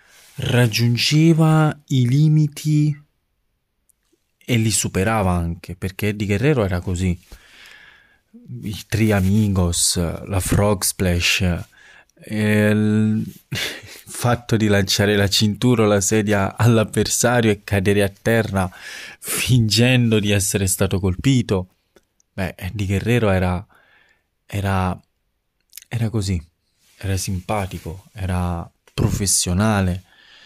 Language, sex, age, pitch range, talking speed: Italian, male, 20-39, 95-120 Hz, 95 wpm